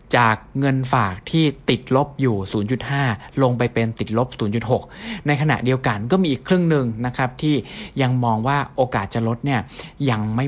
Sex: male